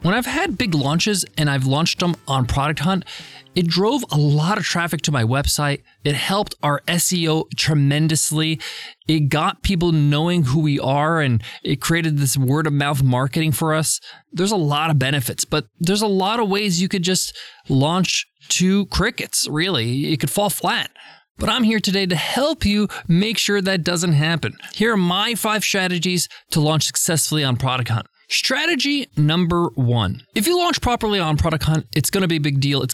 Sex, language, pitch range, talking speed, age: male, English, 145-195 Hz, 190 wpm, 20-39